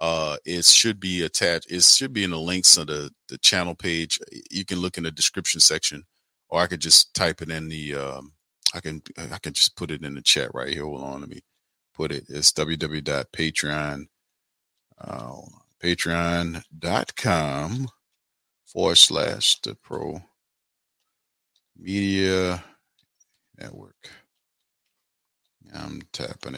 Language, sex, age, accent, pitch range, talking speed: English, male, 40-59, American, 75-90 Hz, 140 wpm